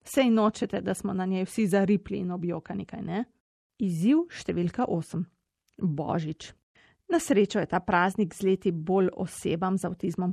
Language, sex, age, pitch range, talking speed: Italian, female, 30-49, 180-215 Hz, 150 wpm